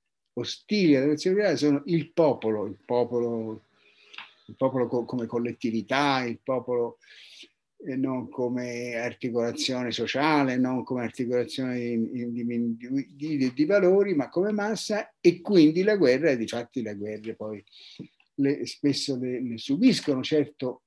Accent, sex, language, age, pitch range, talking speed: native, male, Italian, 50-69, 125-170 Hz, 130 wpm